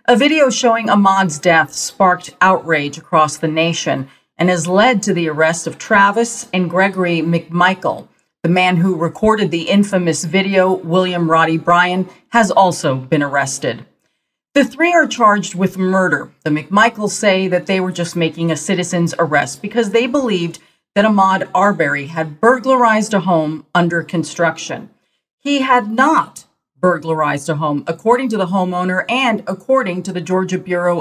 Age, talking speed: 40-59, 155 wpm